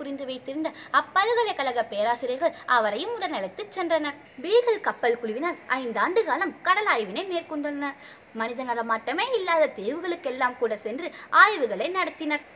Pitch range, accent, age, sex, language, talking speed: 260-350 Hz, native, 20-39, female, Tamil, 100 wpm